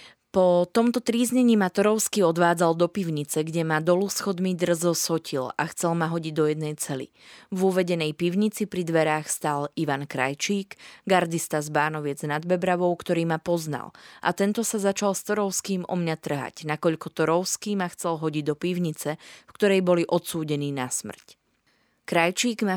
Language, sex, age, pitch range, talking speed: Slovak, female, 20-39, 150-190 Hz, 160 wpm